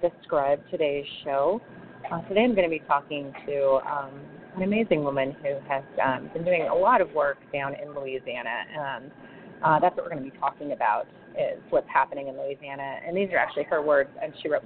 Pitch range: 140-180 Hz